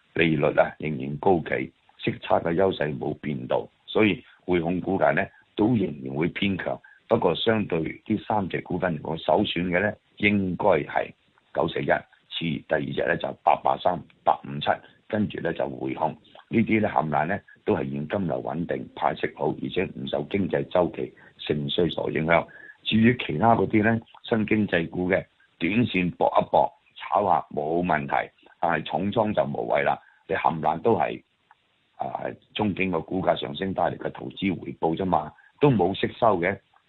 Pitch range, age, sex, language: 80-105 Hz, 50-69, male, Chinese